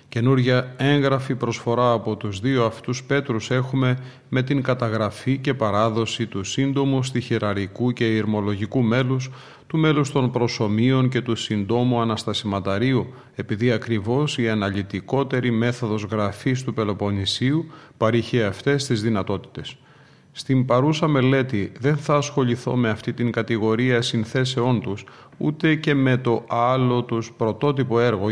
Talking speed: 125 wpm